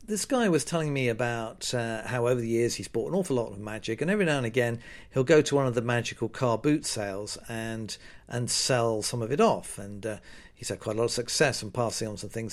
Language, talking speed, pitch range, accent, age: English, 260 wpm, 115-145 Hz, British, 50-69